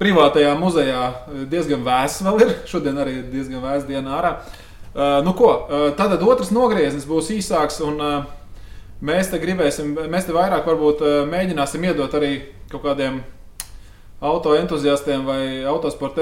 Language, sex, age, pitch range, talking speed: English, male, 20-39, 130-175 Hz, 125 wpm